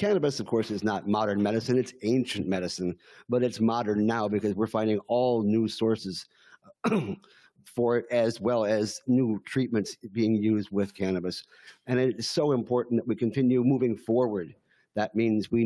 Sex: male